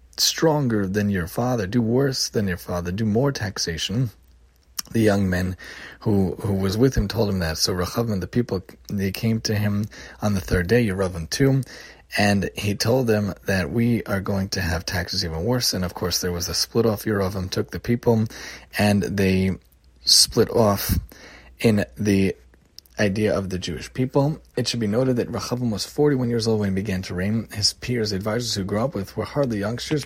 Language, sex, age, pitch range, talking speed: English, male, 30-49, 95-115 Hz, 200 wpm